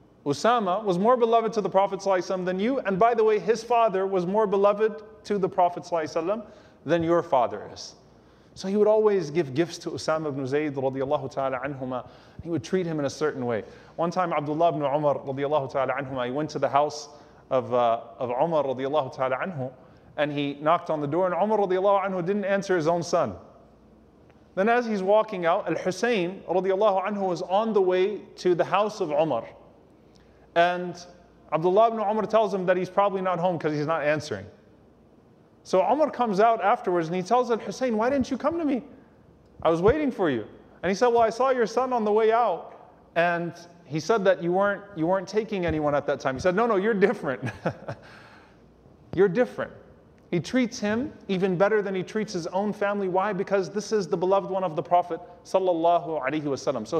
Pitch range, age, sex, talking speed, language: 160-210 Hz, 30-49, male, 195 wpm, English